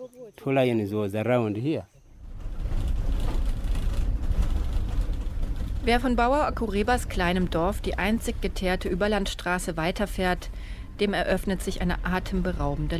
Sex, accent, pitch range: female, German, 140-210 Hz